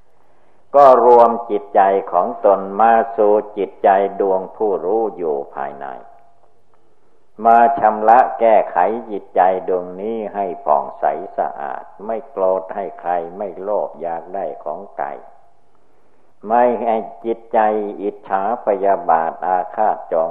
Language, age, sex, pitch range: Thai, 60-79, male, 95-115 Hz